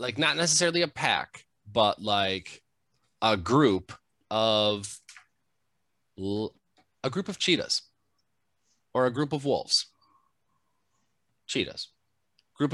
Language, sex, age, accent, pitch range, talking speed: English, male, 30-49, American, 105-130 Hz, 105 wpm